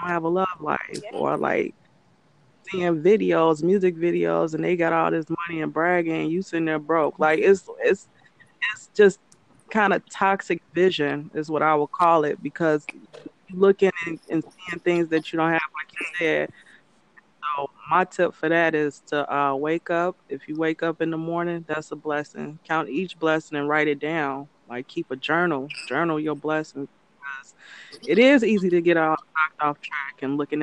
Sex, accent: female, American